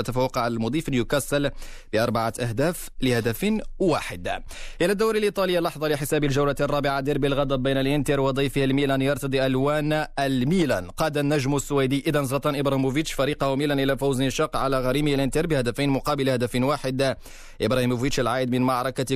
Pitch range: 130-150 Hz